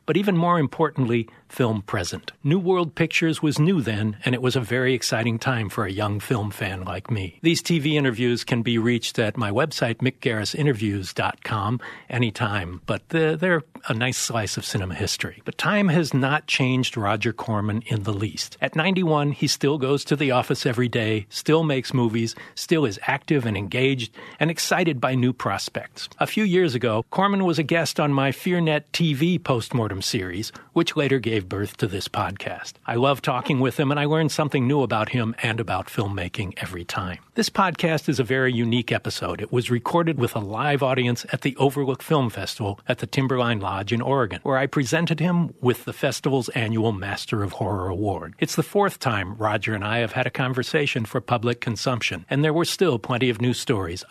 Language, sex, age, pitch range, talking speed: English, male, 50-69, 110-150 Hz, 195 wpm